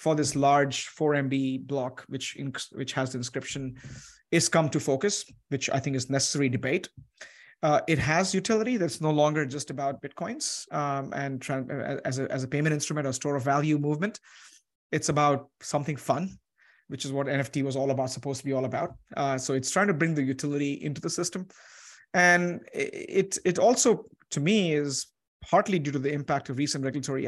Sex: male